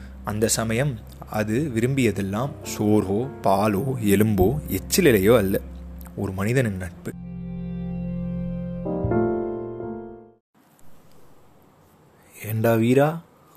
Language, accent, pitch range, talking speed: Tamil, native, 95-130 Hz, 60 wpm